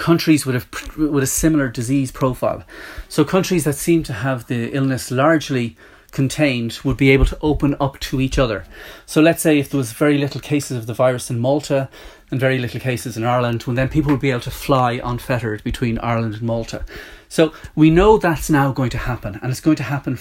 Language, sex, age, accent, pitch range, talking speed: English, male, 30-49, Irish, 120-155 Hz, 210 wpm